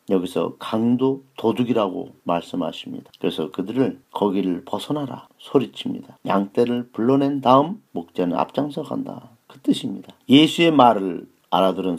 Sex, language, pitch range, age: male, Korean, 95-135 Hz, 40-59